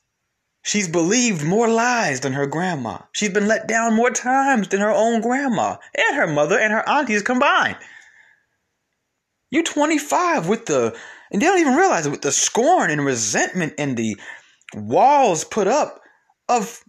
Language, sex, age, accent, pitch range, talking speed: English, male, 20-39, American, 165-255 Hz, 160 wpm